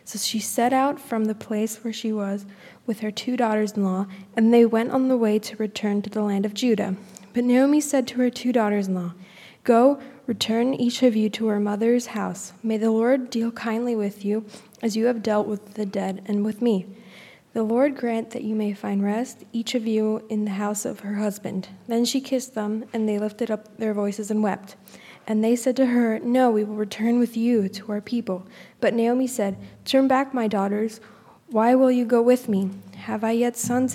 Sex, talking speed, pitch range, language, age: female, 210 wpm, 210-245 Hz, English, 10-29